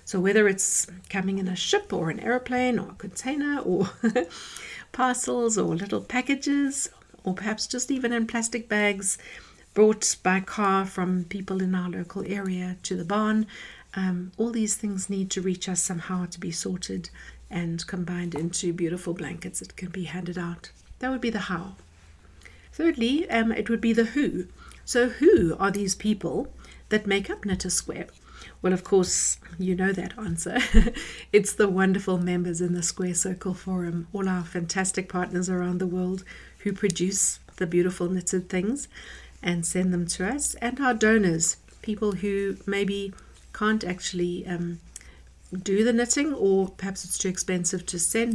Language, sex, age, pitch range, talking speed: English, female, 60-79, 180-215 Hz, 165 wpm